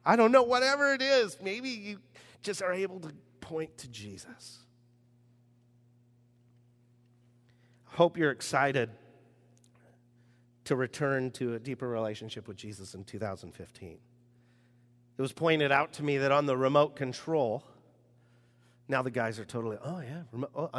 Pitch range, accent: 120-160 Hz, American